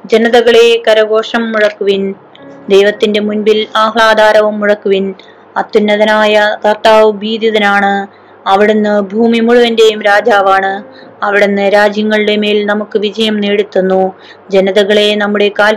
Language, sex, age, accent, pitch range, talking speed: Malayalam, female, 20-39, native, 200-225 Hz, 90 wpm